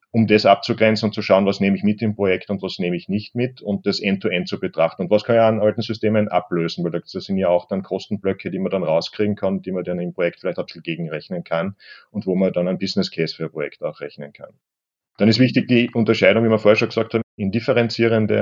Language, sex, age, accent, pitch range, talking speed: German, male, 40-59, German, 95-110 Hz, 255 wpm